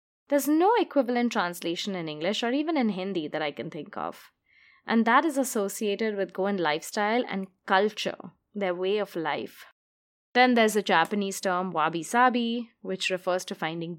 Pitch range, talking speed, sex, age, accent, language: 190-290 Hz, 165 wpm, female, 20-39, Indian, English